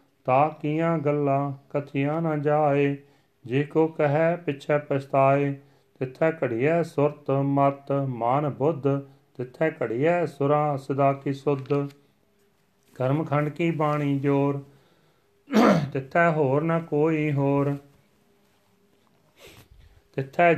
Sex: male